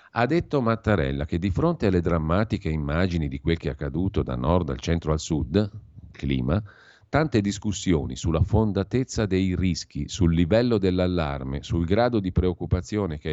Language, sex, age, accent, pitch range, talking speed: Italian, male, 50-69, native, 80-100 Hz, 160 wpm